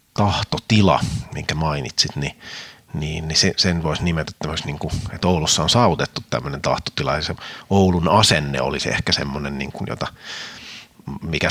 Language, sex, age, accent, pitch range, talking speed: Finnish, male, 30-49, native, 80-100 Hz, 155 wpm